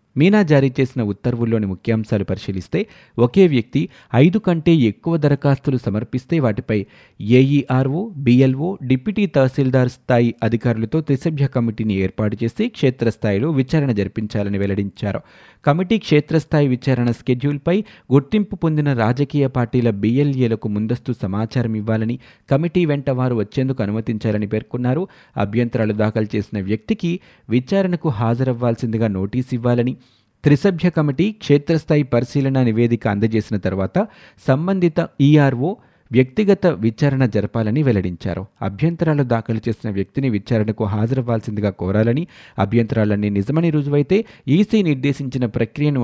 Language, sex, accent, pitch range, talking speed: Telugu, male, native, 110-145 Hz, 105 wpm